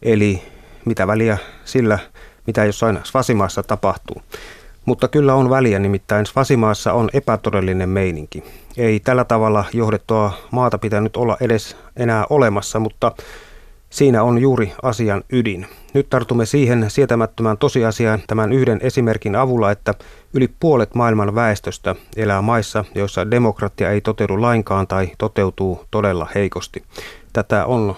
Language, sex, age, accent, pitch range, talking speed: Finnish, male, 30-49, native, 100-120 Hz, 130 wpm